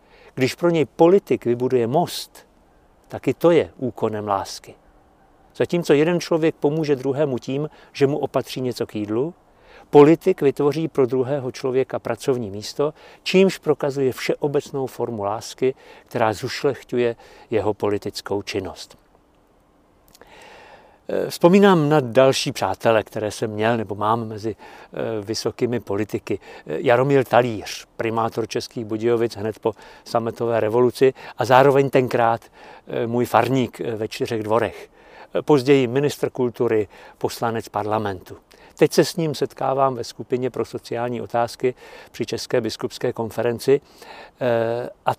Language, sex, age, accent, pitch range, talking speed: Czech, male, 50-69, native, 115-145 Hz, 120 wpm